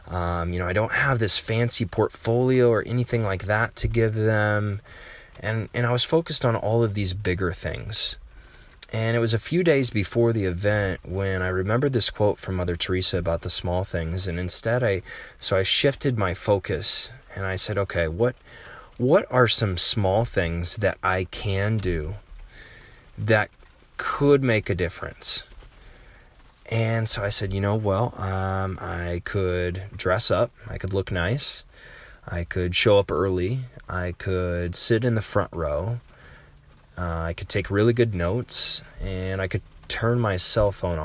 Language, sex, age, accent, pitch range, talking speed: English, male, 20-39, American, 90-115 Hz, 170 wpm